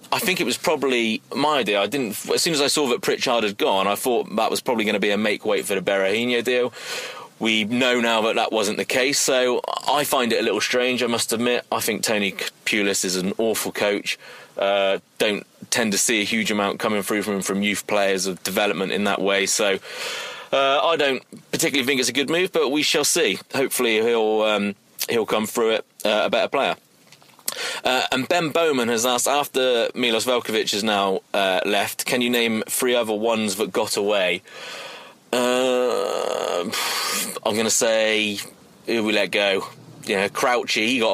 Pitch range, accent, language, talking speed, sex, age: 100-125 Hz, British, English, 205 wpm, male, 30-49